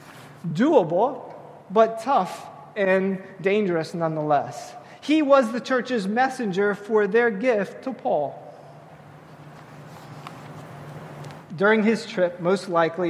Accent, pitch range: American, 160-220 Hz